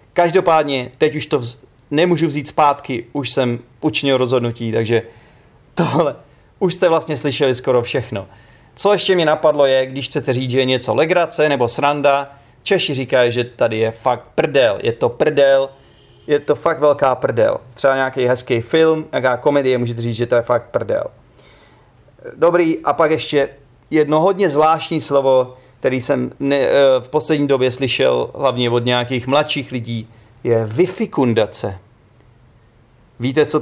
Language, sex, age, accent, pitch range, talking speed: Czech, male, 30-49, native, 120-150 Hz, 150 wpm